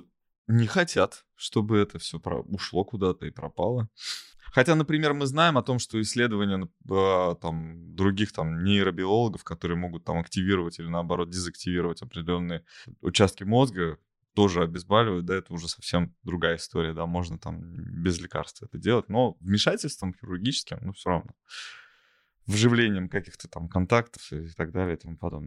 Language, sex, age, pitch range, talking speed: Russian, male, 20-39, 85-110 Hz, 140 wpm